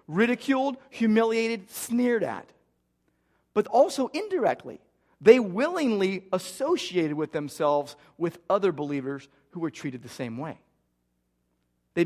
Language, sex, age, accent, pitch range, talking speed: English, male, 40-59, American, 145-220 Hz, 110 wpm